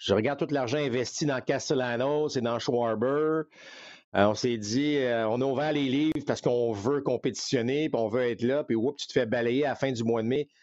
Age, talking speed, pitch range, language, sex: 50-69, 230 wpm, 115-150 Hz, French, male